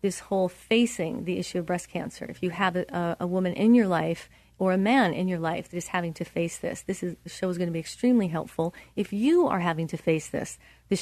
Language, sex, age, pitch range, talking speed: English, female, 40-59, 165-200 Hz, 250 wpm